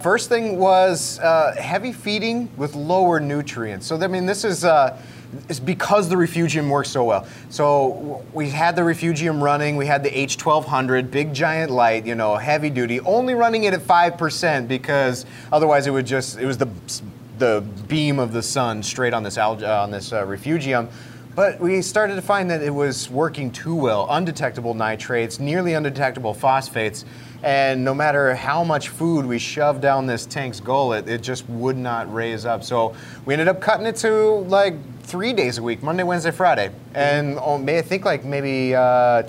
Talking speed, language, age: 180 wpm, English, 30-49